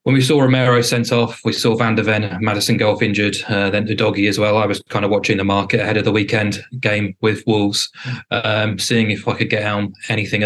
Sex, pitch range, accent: male, 105-120 Hz, British